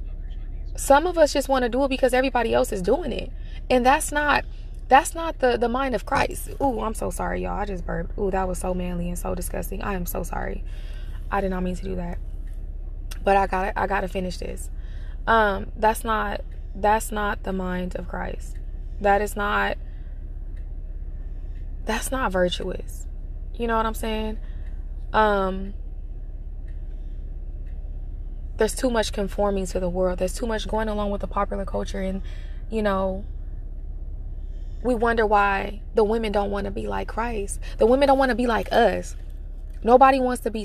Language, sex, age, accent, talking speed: English, female, 20-39, American, 180 wpm